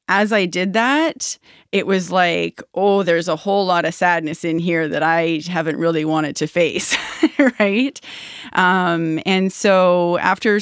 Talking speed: 160 wpm